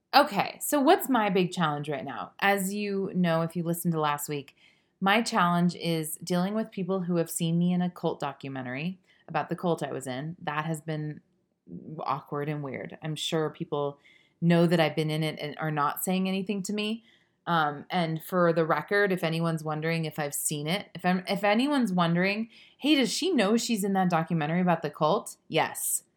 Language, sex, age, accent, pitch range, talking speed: English, female, 30-49, American, 155-195 Hz, 200 wpm